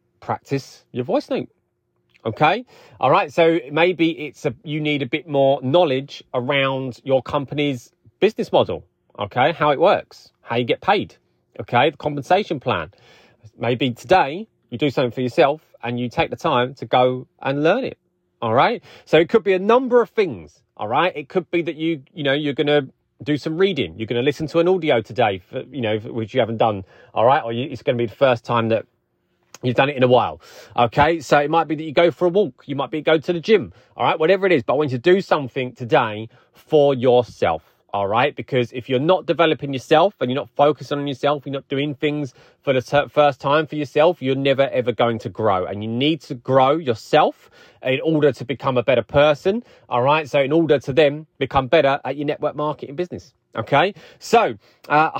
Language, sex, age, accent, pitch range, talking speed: English, male, 30-49, British, 125-165 Hz, 215 wpm